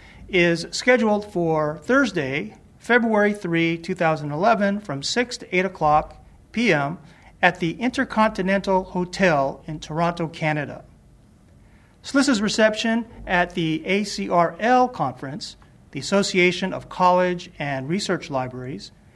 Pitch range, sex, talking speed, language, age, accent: 160-210 Hz, male, 105 wpm, English, 40-59, American